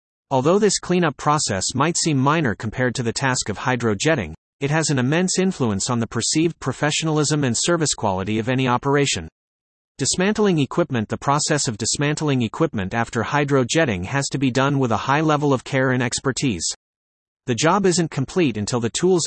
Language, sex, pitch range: English, male, 115-155 Hz